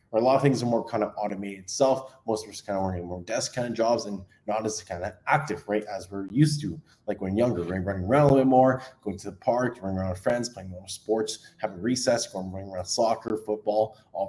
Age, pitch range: 20-39, 105-130 Hz